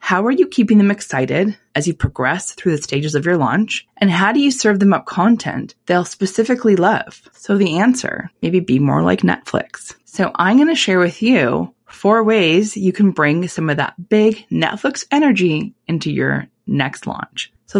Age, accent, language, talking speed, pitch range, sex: 20-39, American, English, 190 wpm, 160-220 Hz, female